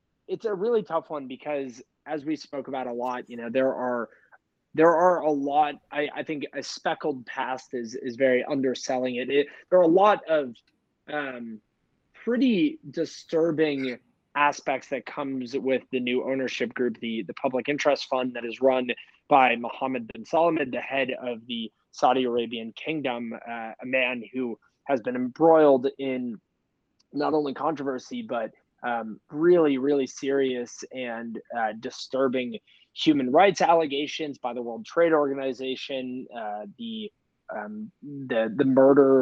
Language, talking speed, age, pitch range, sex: English, 155 wpm, 20-39, 125-150 Hz, male